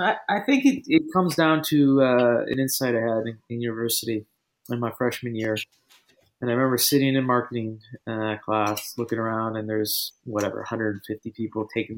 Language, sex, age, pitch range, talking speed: English, male, 20-39, 115-130 Hz, 175 wpm